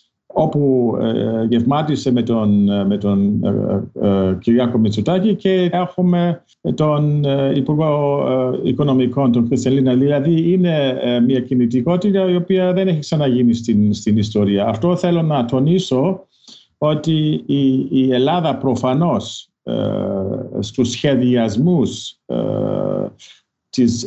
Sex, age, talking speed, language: male, 50-69, 95 wpm, Greek